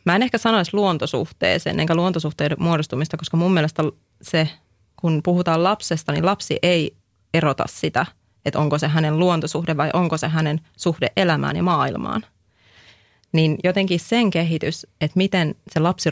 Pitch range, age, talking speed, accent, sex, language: 145-180 Hz, 30-49, 155 wpm, native, female, Finnish